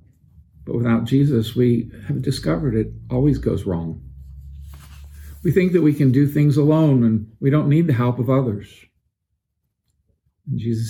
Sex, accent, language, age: male, American, English, 50-69